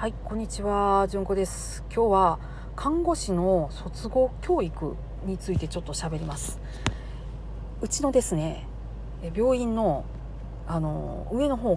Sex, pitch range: female, 165-245 Hz